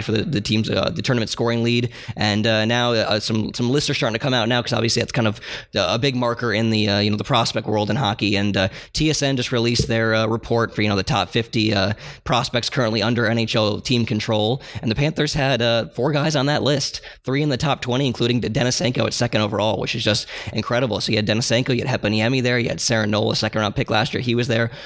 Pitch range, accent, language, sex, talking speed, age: 110-125 Hz, American, English, male, 250 wpm, 20-39